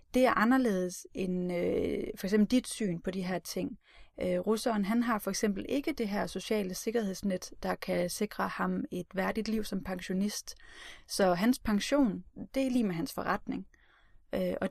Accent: native